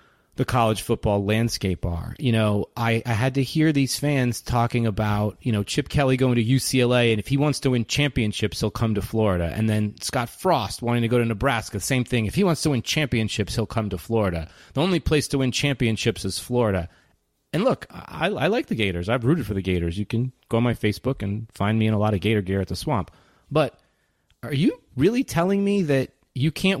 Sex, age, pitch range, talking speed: male, 30-49, 105-140 Hz, 230 wpm